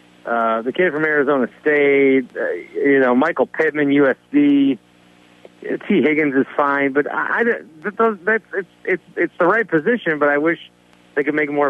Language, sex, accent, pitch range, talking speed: English, male, American, 115-160 Hz, 185 wpm